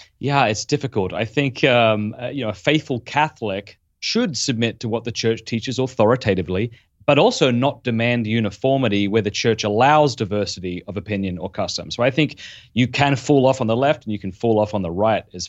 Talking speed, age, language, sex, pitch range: 205 wpm, 30-49, English, male, 100-125 Hz